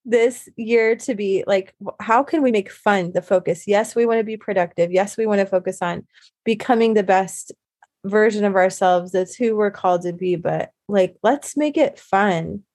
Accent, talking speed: American, 200 wpm